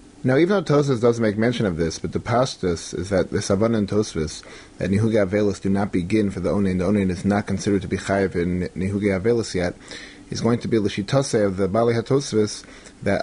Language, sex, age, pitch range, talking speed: English, male, 30-49, 100-120 Hz, 220 wpm